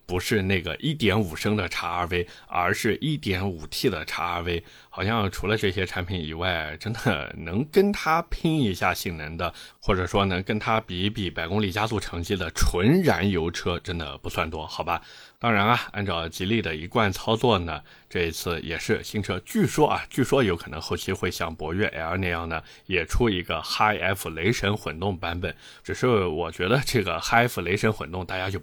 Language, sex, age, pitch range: Chinese, male, 20-39, 85-110 Hz